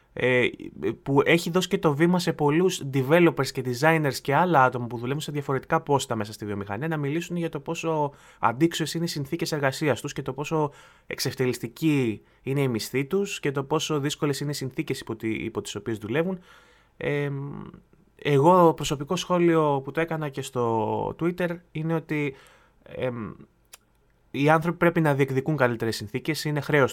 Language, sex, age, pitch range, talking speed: Greek, male, 20-39, 125-155 Hz, 165 wpm